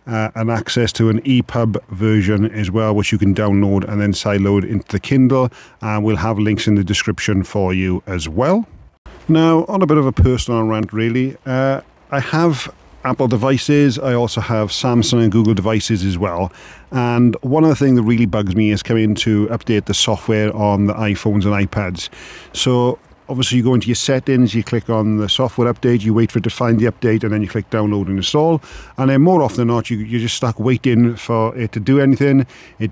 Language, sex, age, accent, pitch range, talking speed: English, male, 40-59, British, 110-125 Hz, 215 wpm